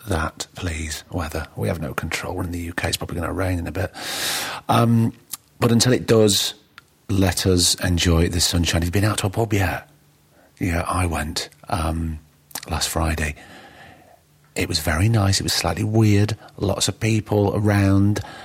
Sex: male